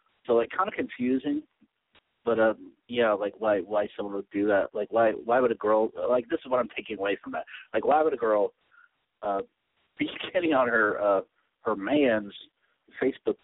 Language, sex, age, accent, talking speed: English, male, 50-69, American, 195 wpm